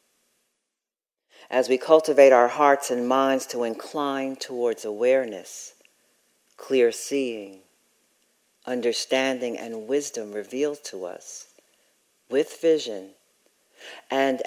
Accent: American